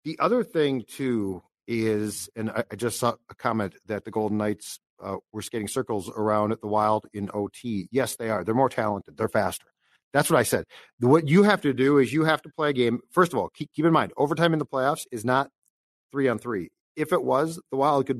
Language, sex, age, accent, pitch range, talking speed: English, male, 50-69, American, 110-145 Hz, 235 wpm